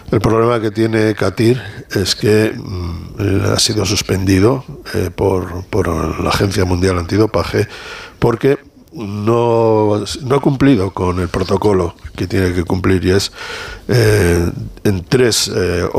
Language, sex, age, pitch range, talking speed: Spanish, male, 60-79, 95-115 Hz, 135 wpm